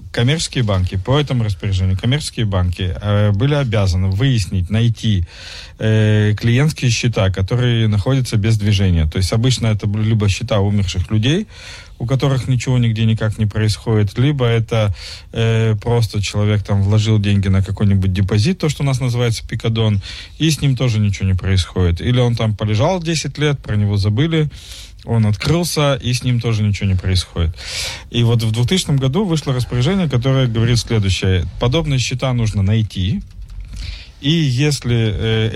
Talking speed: 160 wpm